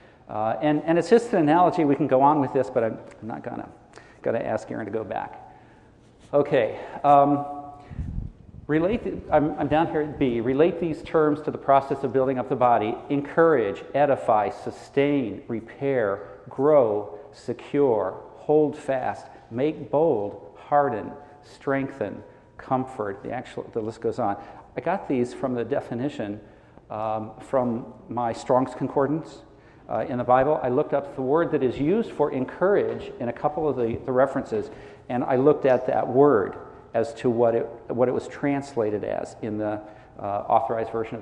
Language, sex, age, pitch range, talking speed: English, male, 50-69, 120-150 Hz, 170 wpm